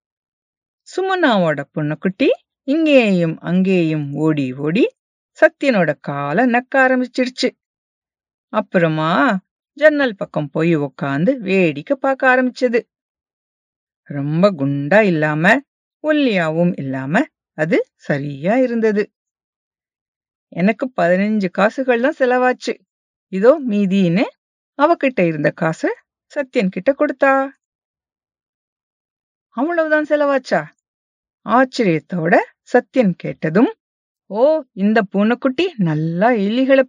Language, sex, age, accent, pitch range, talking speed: English, female, 50-69, Indian, 175-270 Hz, 80 wpm